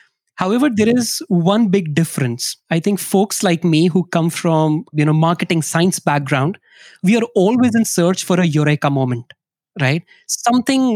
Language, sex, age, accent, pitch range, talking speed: English, male, 20-39, Indian, 165-205 Hz, 165 wpm